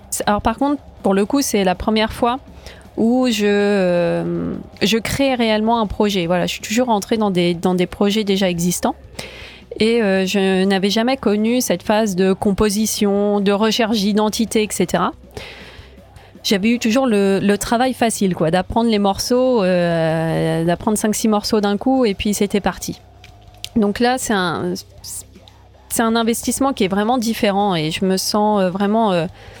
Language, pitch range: French, 185-230 Hz